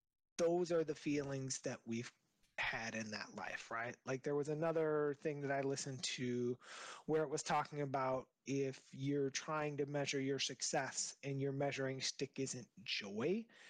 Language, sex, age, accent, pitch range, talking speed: English, male, 30-49, American, 130-160 Hz, 165 wpm